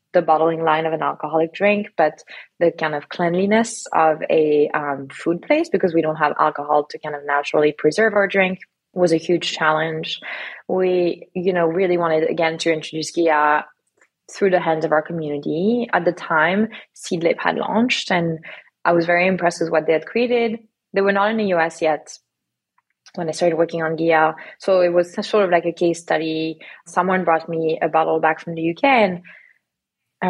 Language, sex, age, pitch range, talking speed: English, female, 20-39, 155-185 Hz, 190 wpm